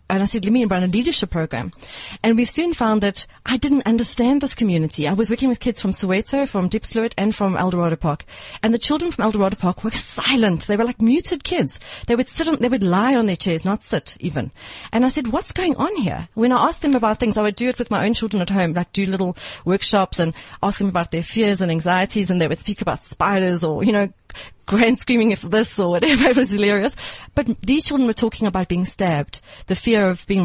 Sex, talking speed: female, 240 wpm